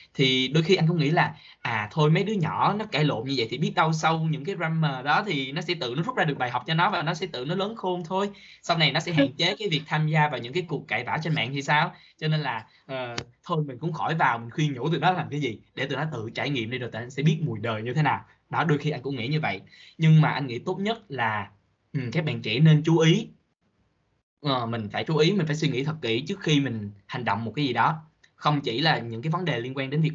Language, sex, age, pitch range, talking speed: Vietnamese, male, 10-29, 130-165 Hz, 300 wpm